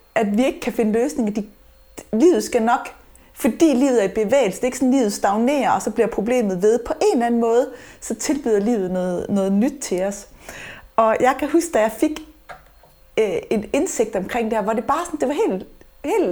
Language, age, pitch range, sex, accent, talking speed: Danish, 30-49, 210-255 Hz, female, native, 220 wpm